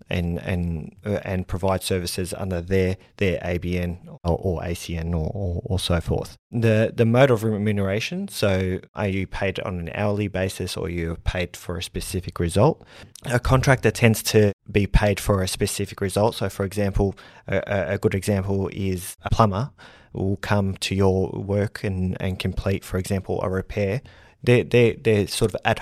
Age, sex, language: 20-39, male, English